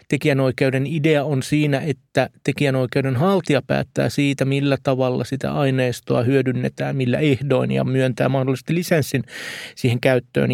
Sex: male